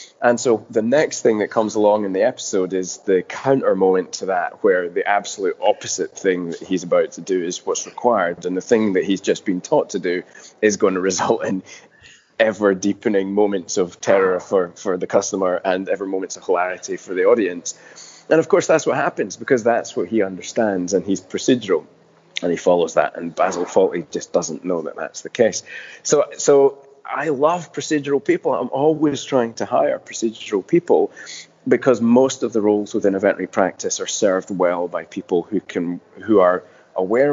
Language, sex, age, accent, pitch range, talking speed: English, male, 20-39, British, 95-155 Hz, 195 wpm